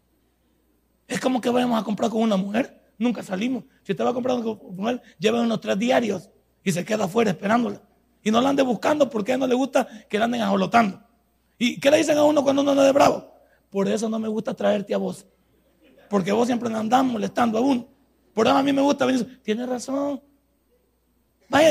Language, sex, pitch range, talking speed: Spanish, male, 205-275 Hz, 220 wpm